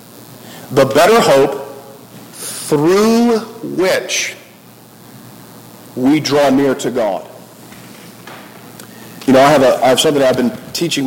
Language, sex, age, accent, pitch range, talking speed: English, male, 40-59, American, 130-185 Hz, 120 wpm